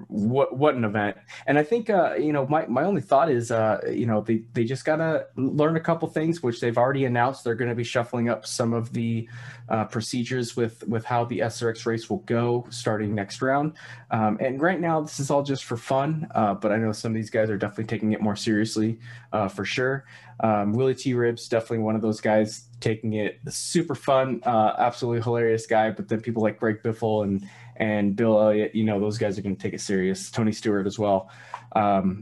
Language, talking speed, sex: English, 225 wpm, male